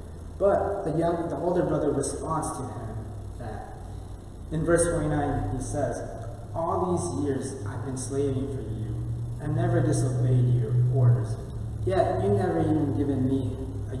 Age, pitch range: 20-39, 115-160 Hz